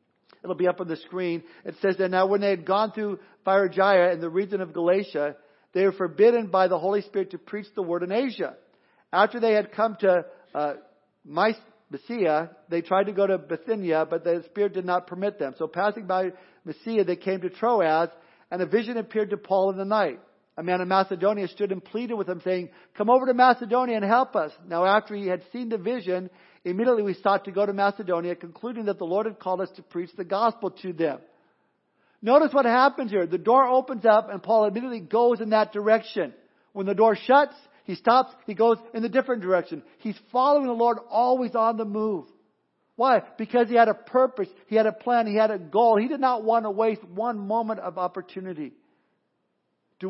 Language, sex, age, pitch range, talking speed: English, male, 50-69, 185-225 Hz, 210 wpm